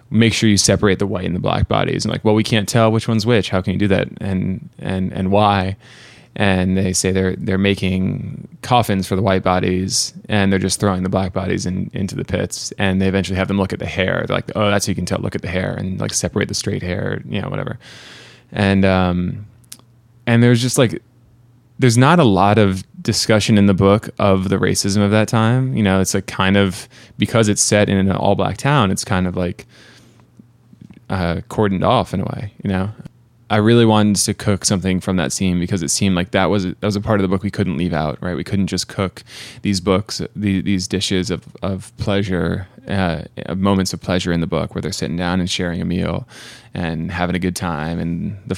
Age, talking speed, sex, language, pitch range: 20-39, 230 wpm, male, English, 95-110 Hz